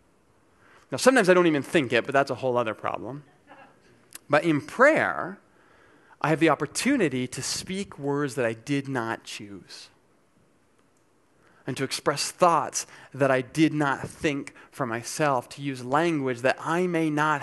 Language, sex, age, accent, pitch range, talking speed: English, male, 30-49, American, 120-155 Hz, 160 wpm